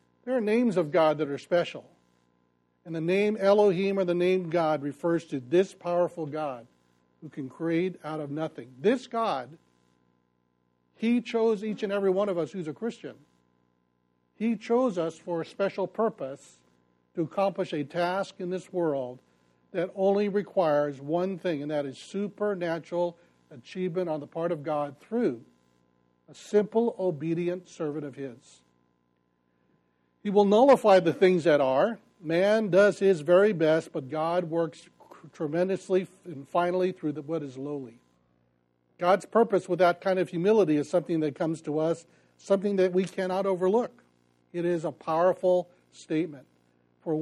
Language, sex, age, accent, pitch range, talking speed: English, male, 60-79, American, 135-185 Hz, 155 wpm